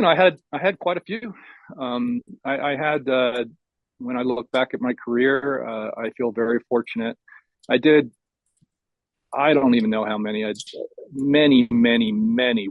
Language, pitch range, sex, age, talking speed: English, 105-140 Hz, male, 40-59, 180 wpm